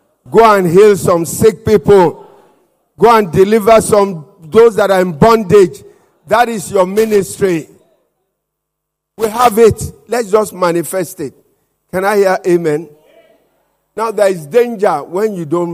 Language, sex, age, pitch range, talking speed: English, male, 50-69, 175-230 Hz, 140 wpm